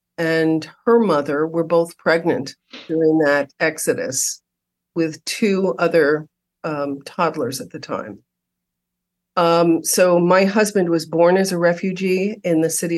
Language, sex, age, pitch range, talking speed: English, female, 50-69, 150-180 Hz, 135 wpm